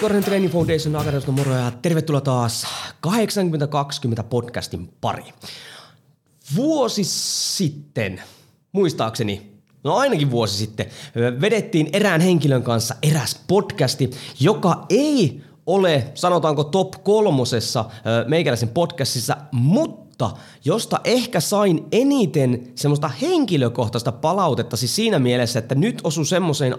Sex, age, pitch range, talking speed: male, 20-39, 120-175 Hz, 105 wpm